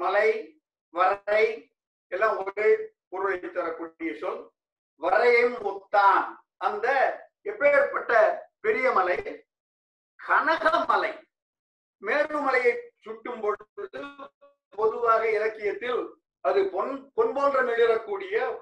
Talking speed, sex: 70 wpm, male